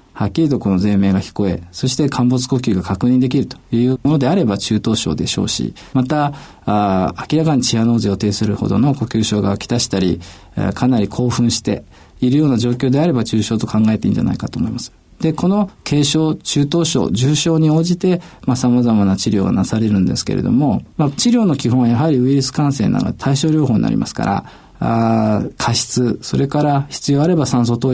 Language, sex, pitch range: Japanese, male, 110-145 Hz